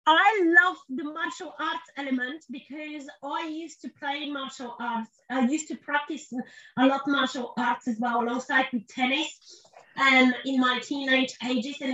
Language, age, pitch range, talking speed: English, 30-49, 245-300 Hz, 165 wpm